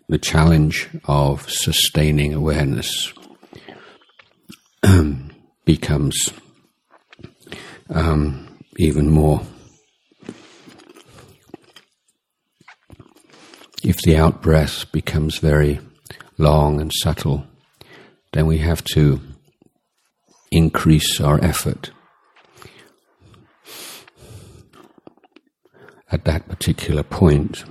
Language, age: Thai, 60-79